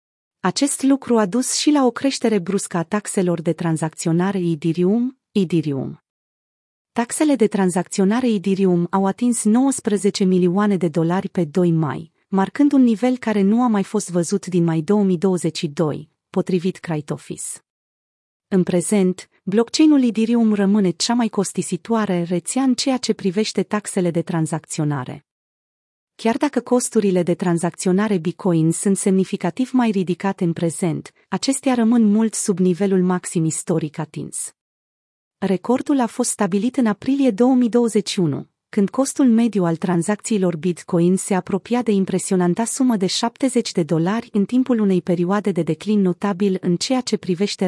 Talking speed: 140 wpm